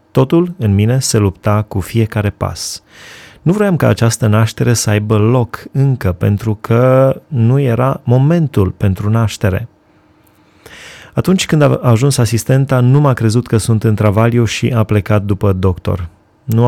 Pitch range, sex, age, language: 100-120 Hz, male, 20-39, Romanian